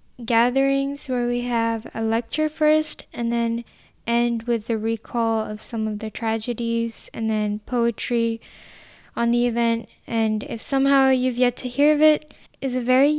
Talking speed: 165 wpm